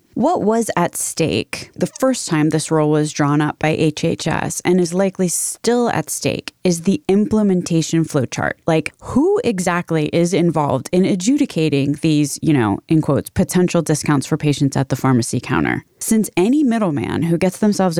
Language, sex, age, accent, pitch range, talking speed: English, female, 20-39, American, 145-180 Hz, 165 wpm